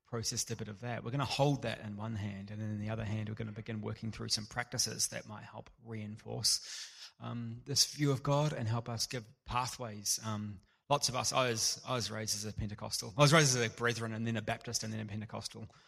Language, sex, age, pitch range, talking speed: English, male, 20-39, 110-125 Hz, 255 wpm